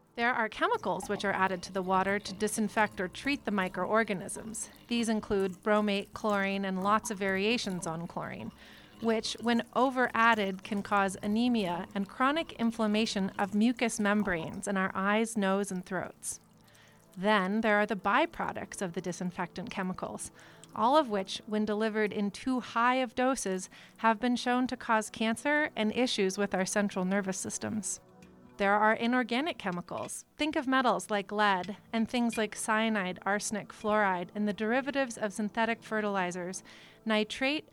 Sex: female